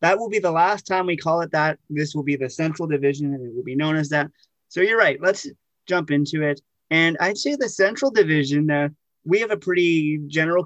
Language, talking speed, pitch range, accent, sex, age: English, 235 wpm, 140-180 Hz, American, male, 30-49